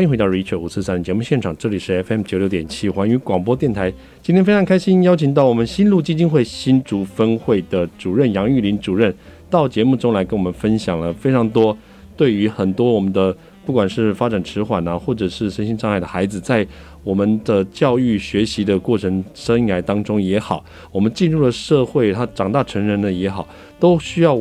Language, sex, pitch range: Chinese, male, 95-125 Hz